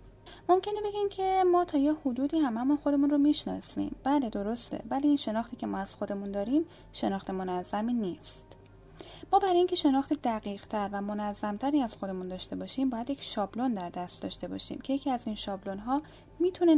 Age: 10-29